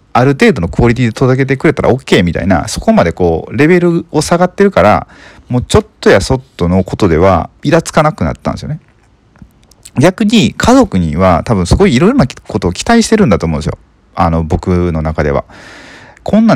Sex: male